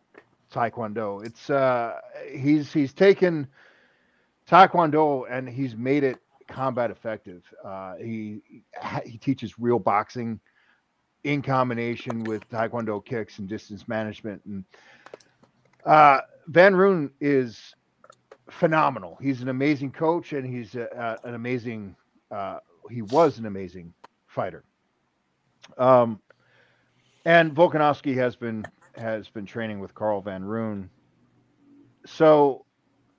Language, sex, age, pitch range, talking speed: English, male, 40-59, 110-135 Hz, 110 wpm